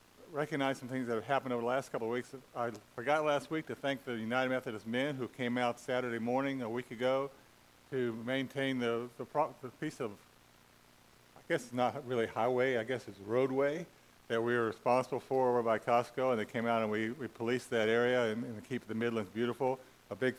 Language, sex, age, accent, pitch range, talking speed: English, male, 50-69, American, 115-130 Hz, 215 wpm